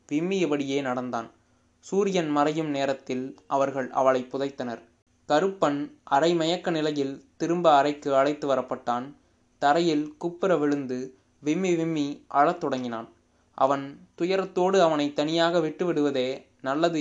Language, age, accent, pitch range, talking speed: Tamil, 20-39, native, 135-160 Hz, 100 wpm